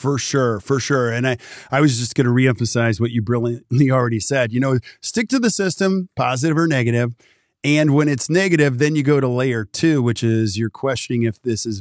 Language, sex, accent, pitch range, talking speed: English, male, American, 120-160 Hz, 220 wpm